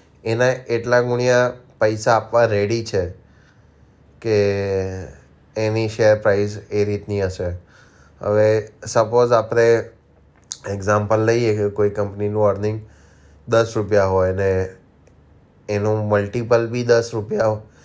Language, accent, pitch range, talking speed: Gujarati, native, 100-120 Hz, 95 wpm